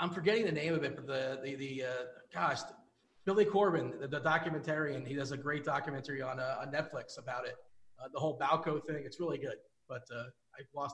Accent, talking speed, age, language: American, 220 wpm, 30-49, English